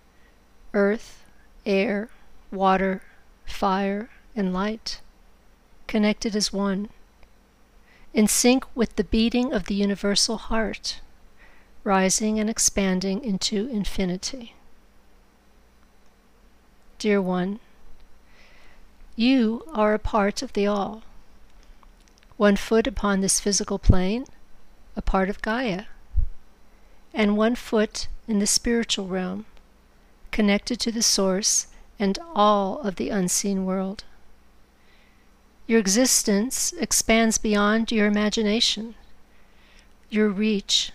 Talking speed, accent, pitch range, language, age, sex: 100 wpm, American, 190-225 Hz, English, 50-69, female